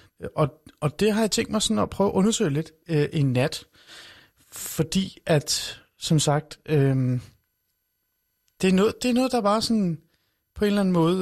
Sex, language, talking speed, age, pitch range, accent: male, Danish, 185 wpm, 30-49, 130-165 Hz, native